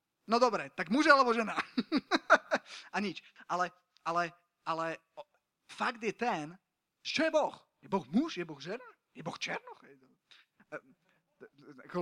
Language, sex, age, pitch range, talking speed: Slovak, male, 30-49, 170-215 Hz, 140 wpm